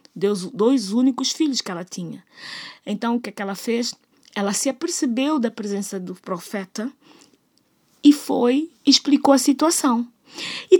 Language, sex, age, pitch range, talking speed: Portuguese, female, 20-39, 200-275 Hz, 150 wpm